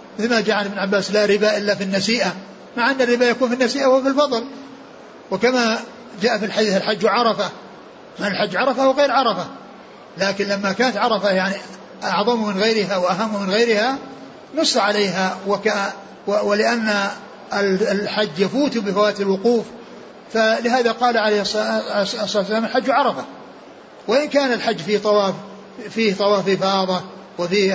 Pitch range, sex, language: 200-245 Hz, male, Arabic